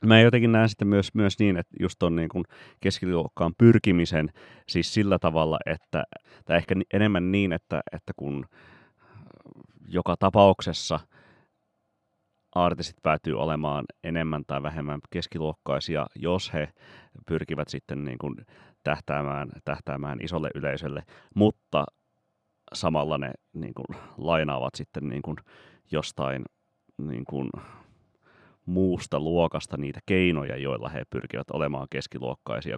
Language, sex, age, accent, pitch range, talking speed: Finnish, male, 30-49, native, 70-90 Hz, 120 wpm